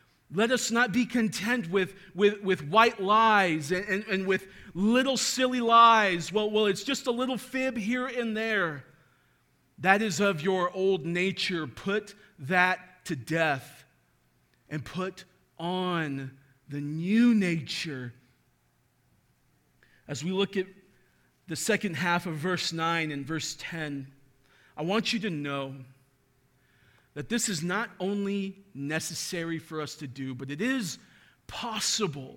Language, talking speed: English, 135 wpm